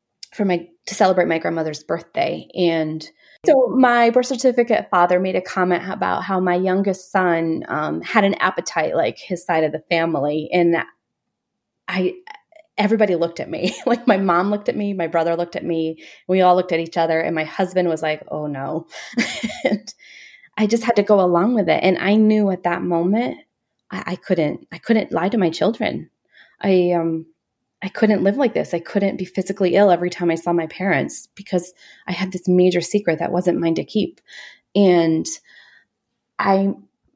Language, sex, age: English, female, 20-39